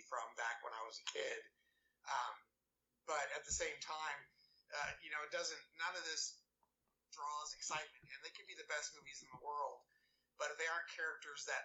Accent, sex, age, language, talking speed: American, male, 30-49, English, 200 wpm